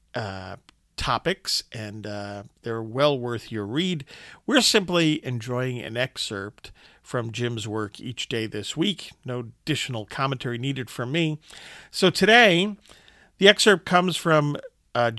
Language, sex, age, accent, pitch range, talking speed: English, male, 50-69, American, 120-165 Hz, 135 wpm